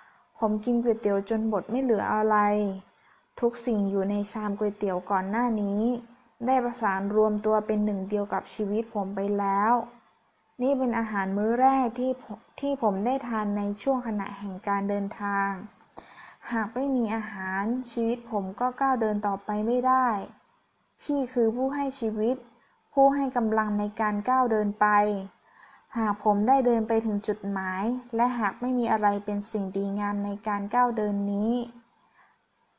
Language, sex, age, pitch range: Thai, female, 20-39, 205-245 Hz